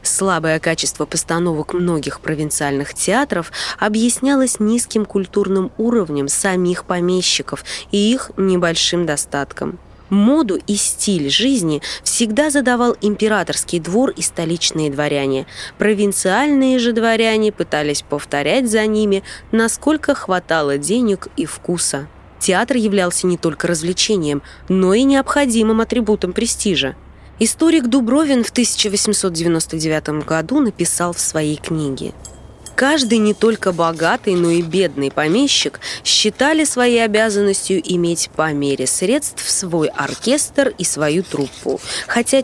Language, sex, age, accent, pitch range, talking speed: Russian, female, 20-39, native, 165-230 Hz, 110 wpm